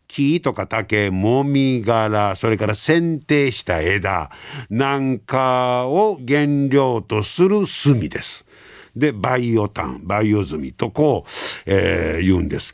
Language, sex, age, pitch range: Japanese, male, 50-69, 105-150 Hz